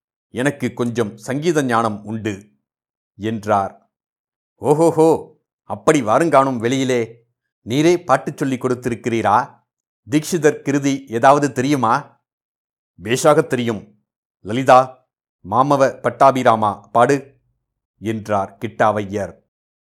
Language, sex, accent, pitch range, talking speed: Tamil, male, native, 110-135 Hz, 75 wpm